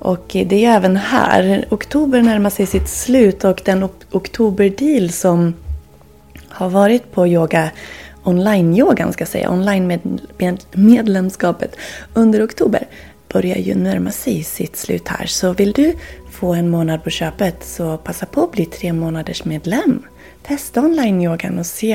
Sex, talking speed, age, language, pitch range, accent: female, 140 wpm, 30-49, Swedish, 160-230 Hz, native